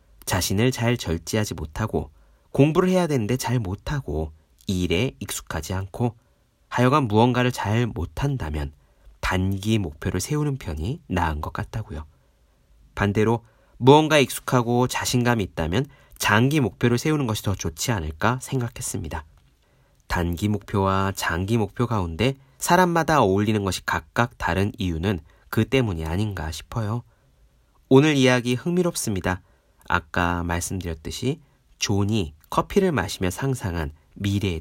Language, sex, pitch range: Korean, male, 95-135 Hz